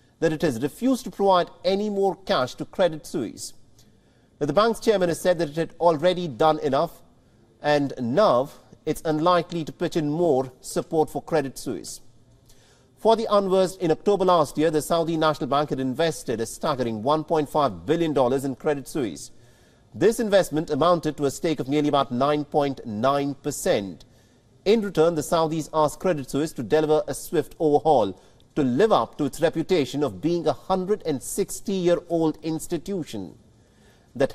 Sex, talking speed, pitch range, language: male, 160 wpm, 140-175 Hz, English